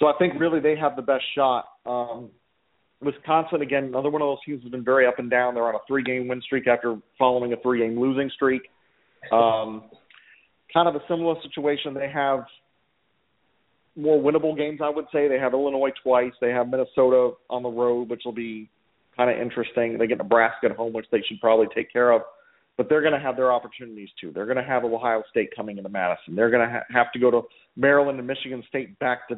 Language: English